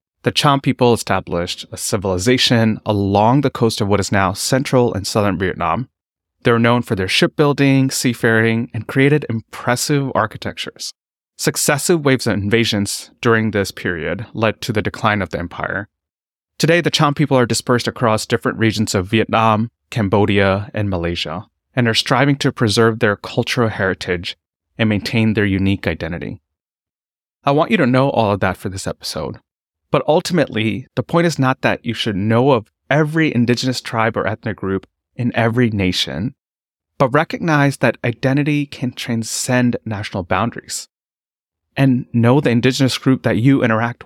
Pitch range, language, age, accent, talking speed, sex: 105-130 Hz, English, 30-49, American, 160 wpm, male